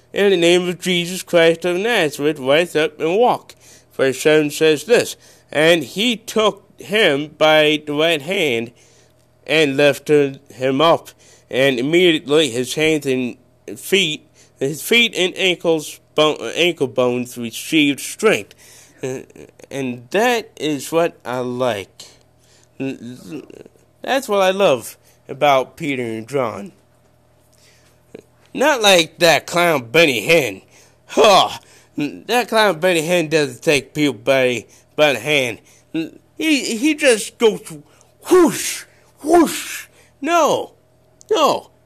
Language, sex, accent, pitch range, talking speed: English, male, American, 130-200 Hz, 120 wpm